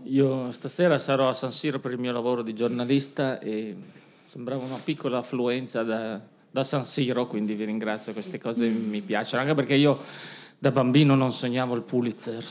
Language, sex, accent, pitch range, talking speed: Italian, male, native, 120-145 Hz, 175 wpm